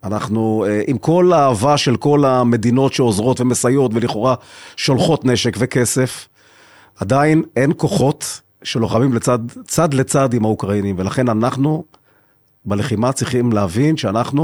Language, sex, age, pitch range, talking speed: Hebrew, male, 40-59, 115-150 Hz, 115 wpm